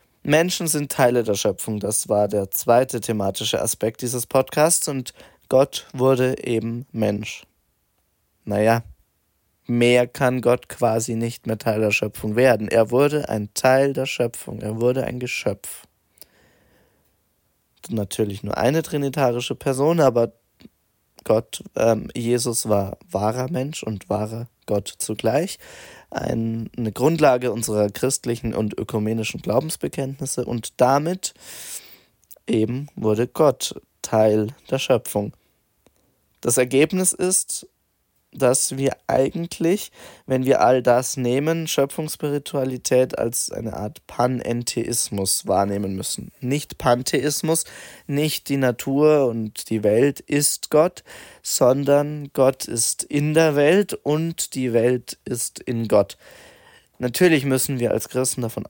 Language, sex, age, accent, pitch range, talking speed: German, male, 20-39, German, 110-135 Hz, 120 wpm